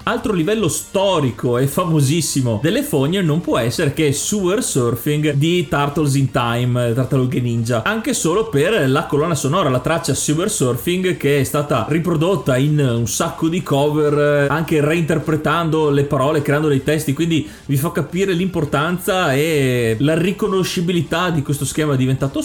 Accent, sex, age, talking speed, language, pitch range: native, male, 30-49, 150 wpm, Italian, 130-165 Hz